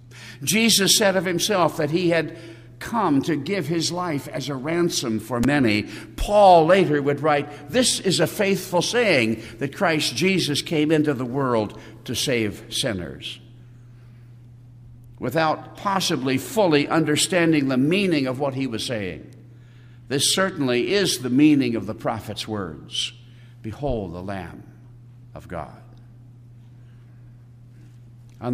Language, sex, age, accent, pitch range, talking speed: English, male, 60-79, American, 120-150 Hz, 130 wpm